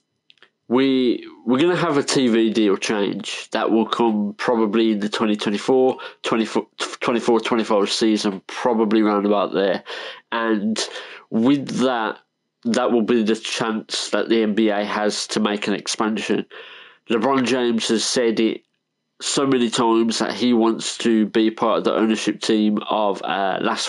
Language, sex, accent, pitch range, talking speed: English, male, British, 105-125 Hz, 150 wpm